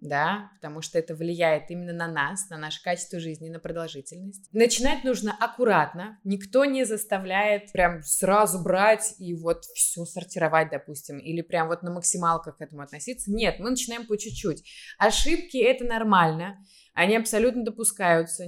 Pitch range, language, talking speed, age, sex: 170-210 Hz, Russian, 155 wpm, 20-39, female